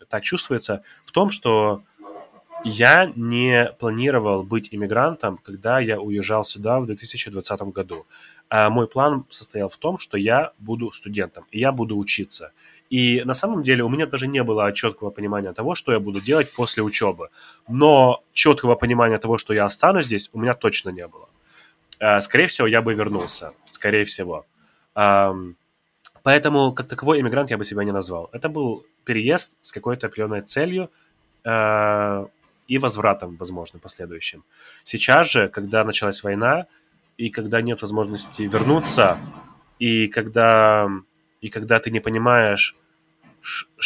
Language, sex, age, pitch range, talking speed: English, male, 20-39, 105-125 Hz, 145 wpm